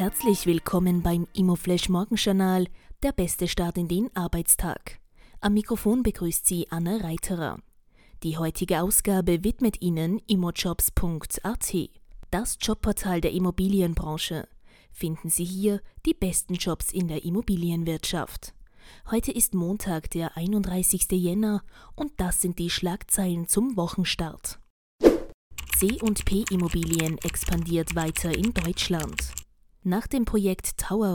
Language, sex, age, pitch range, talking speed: German, female, 20-39, 170-200 Hz, 110 wpm